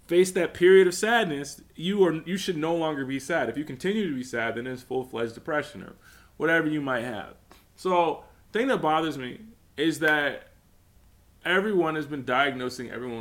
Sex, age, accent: male, 20-39, American